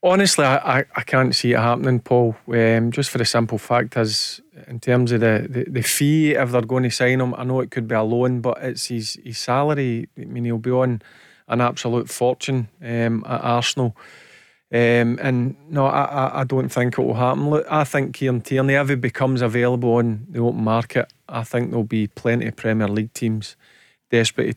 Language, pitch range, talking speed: English, 115-135 Hz, 210 wpm